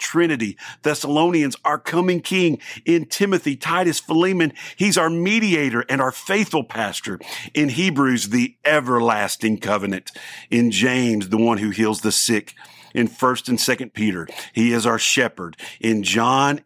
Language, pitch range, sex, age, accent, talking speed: English, 110-150 Hz, male, 50-69, American, 145 wpm